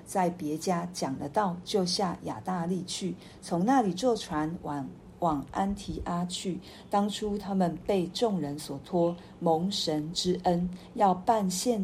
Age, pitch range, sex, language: 50-69, 160-195 Hz, female, Chinese